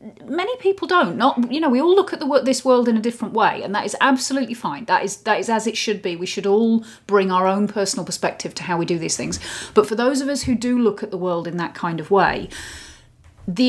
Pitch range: 205-265 Hz